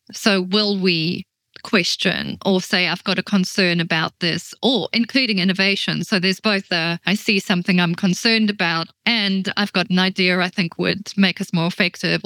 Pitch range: 180-210 Hz